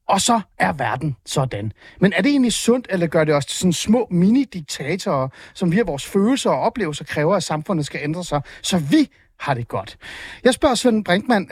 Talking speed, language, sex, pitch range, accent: 210 wpm, Danish, male, 150-225 Hz, native